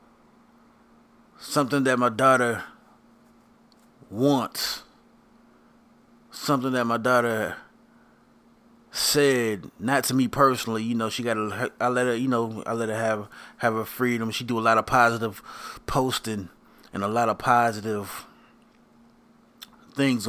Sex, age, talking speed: male, 30-49, 125 wpm